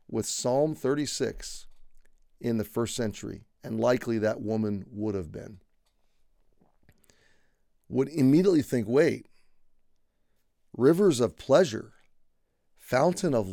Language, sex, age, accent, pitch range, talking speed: English, male, 40-59, American, 105-145 Hz, 100 wpm